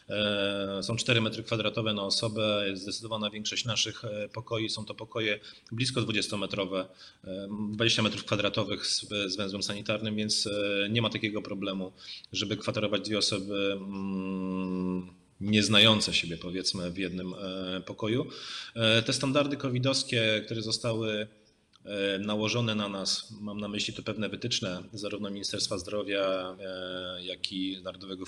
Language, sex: Polish, male